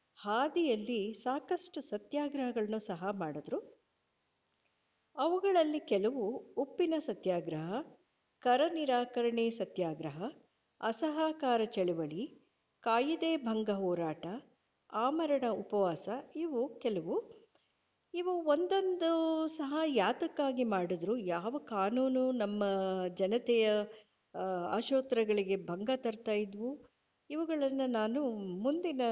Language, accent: Kannada, native